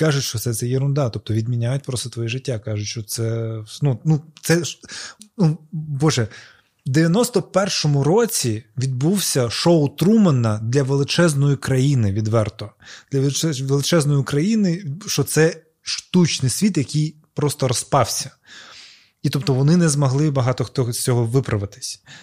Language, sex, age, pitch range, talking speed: Ukrainian, male, 20-39, 120-150 Hz, 130 wpm